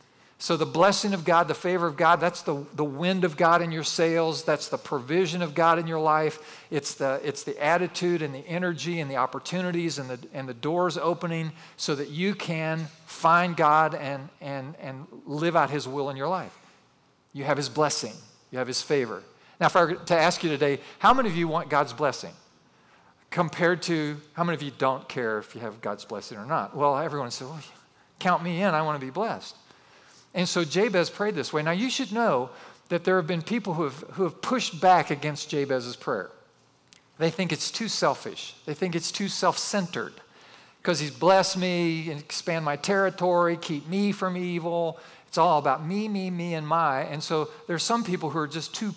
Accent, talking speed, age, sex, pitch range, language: American, 210 wpm, 40-59, male, 150-180 Hz, English